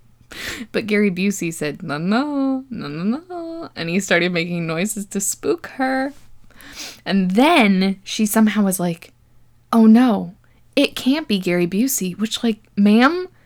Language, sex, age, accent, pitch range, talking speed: English, female, 10-29, American, 200-275 Hz, 145 wpm